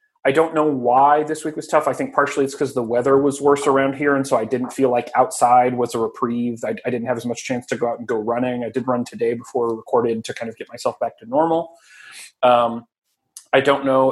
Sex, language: male, English